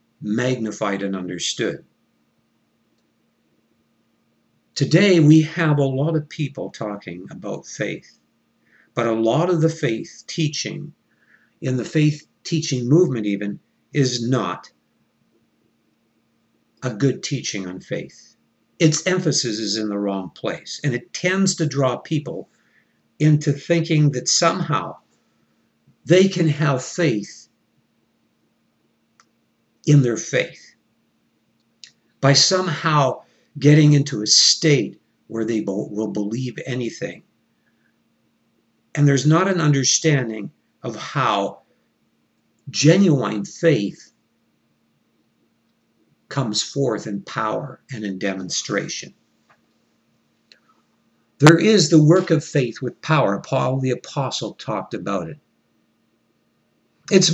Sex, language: male, English